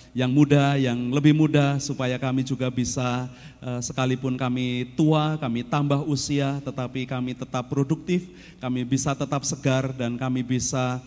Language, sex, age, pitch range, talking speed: Indonesian, male, 30-49, 130-150 Hz, 145 wpm